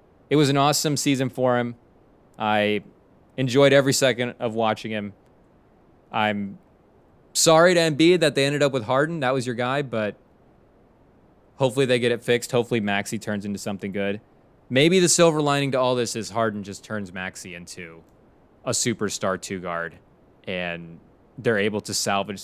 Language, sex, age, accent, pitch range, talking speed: English, male, 20-39, American, 105-135 Hz, 165 wpm